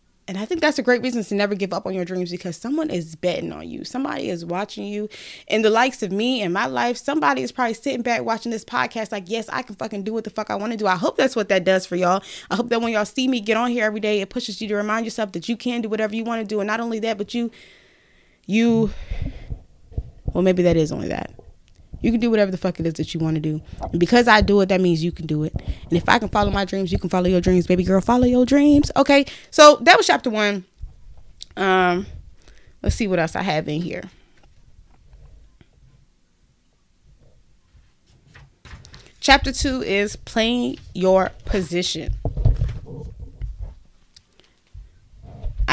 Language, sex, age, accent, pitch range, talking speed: English, female, 20-39, American, 180-235 Hz, 215 wpm